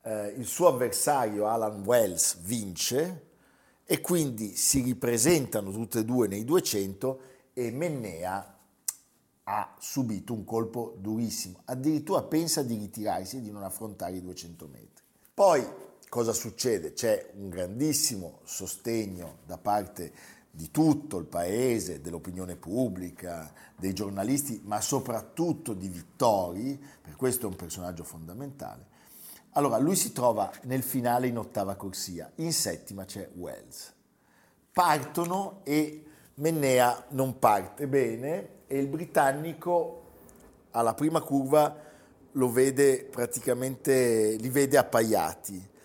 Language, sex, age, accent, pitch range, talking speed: Italian, male, 50-69, native, 100-140 Hz, 120 wpm